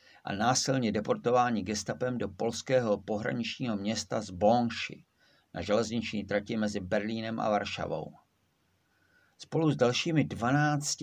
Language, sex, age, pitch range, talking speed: Czech, male, 50-69, 105-135 Hz, 115 wpm